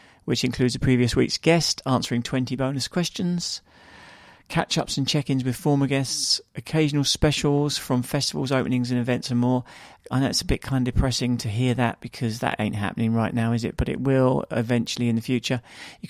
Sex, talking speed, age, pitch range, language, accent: male, 195 wpm, 40-59, 115-135 Hz, English, British